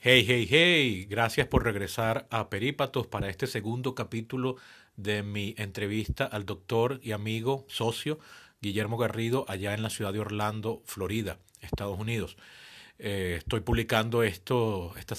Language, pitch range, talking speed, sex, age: Spanish, 100-120 Hz, 140 wpm, male, 40-59